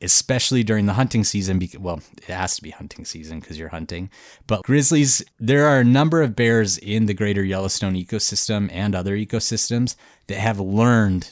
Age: 30-49